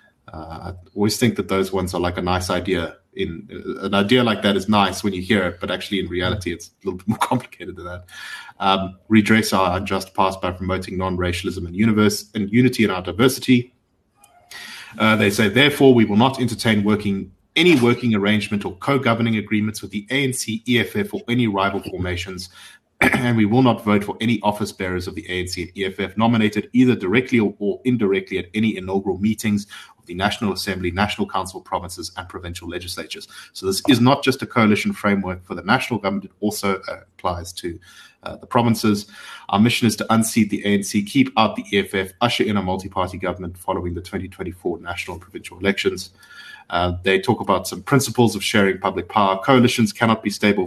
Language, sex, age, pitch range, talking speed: English, male, 30-49, 95-110 Hz, 190 wpm